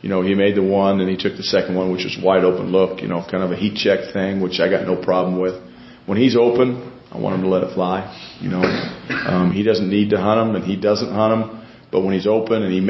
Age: 40-59